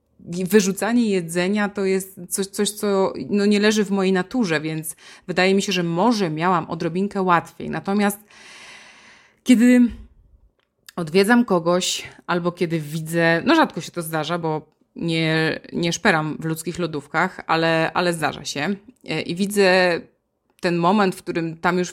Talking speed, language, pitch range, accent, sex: 140 wpm, Polish, 165-195 Hz, native, female